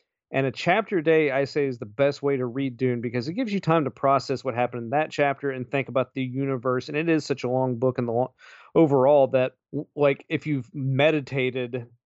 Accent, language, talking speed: American, English, 235 wpm